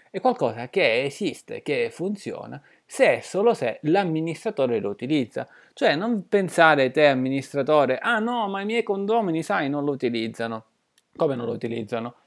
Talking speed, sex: 150 wpm, male